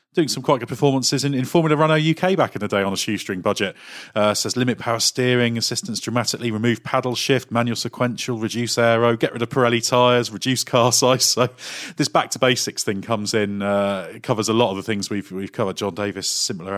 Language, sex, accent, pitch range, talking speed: English, male, British, 105-130 Hz, 220 wpm